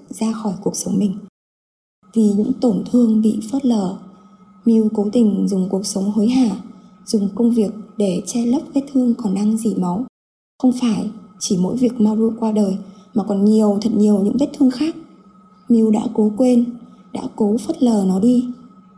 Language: Vietnamese